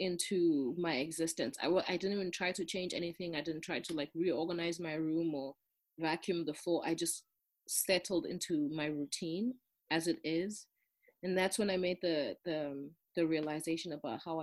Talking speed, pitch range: 180 wpm, 150-180 Hz